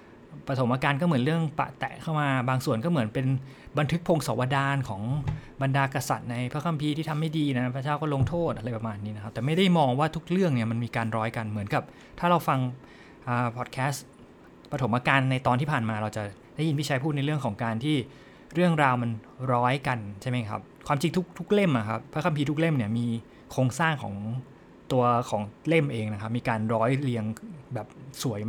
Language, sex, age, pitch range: English, male, 20-39, 115-150 Hz